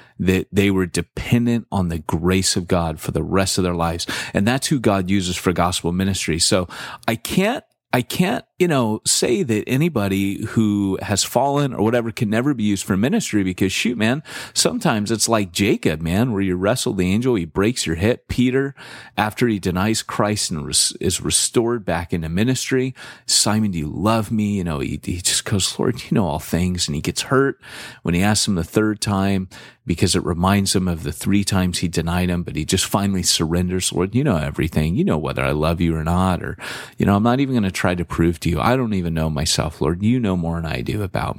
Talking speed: 220 wpm